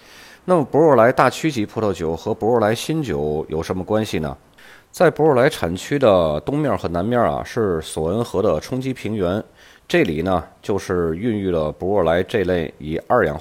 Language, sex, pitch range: Chinese, male, 80-120 Hz